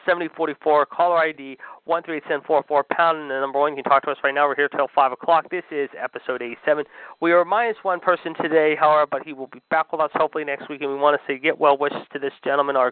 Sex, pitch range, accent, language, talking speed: male, 135-160 Hz, American, English, 270 wpm